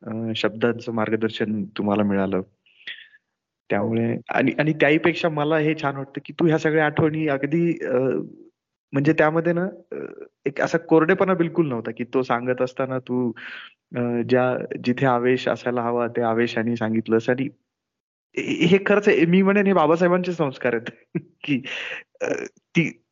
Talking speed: 130 wpm